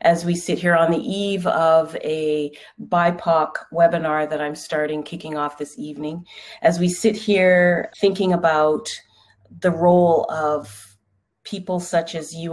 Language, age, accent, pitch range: English, 30-49, American, 155-180 Hz